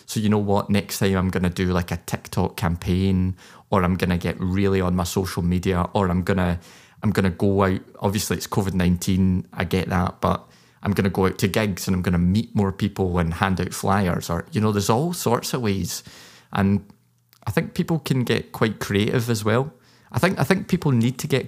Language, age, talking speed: English, 20-39, 235 wpm